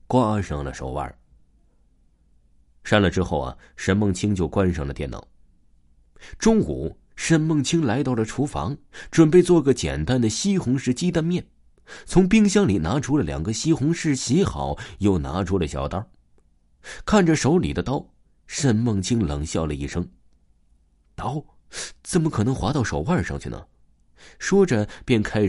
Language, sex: Chinese, male